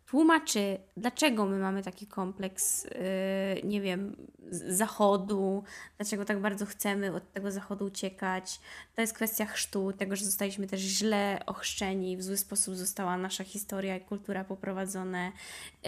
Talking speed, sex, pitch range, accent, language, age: 145 wpm, female, 195-230 Hz, native, Polish, 10-29